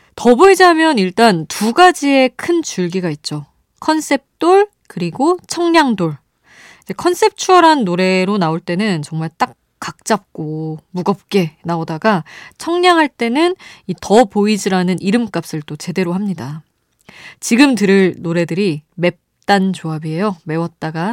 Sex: female